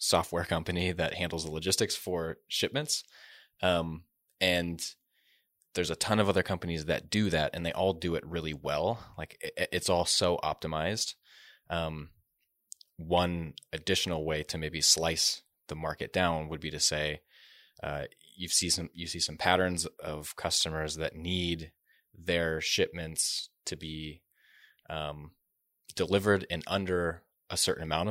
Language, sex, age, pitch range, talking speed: English, male, 20-39, 80-95 Hz, 145 wpm